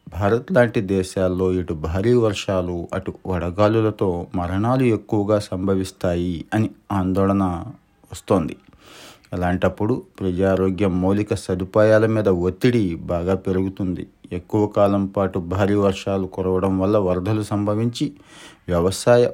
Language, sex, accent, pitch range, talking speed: Telugu, male, native, 95-105 Hz, 100 wpm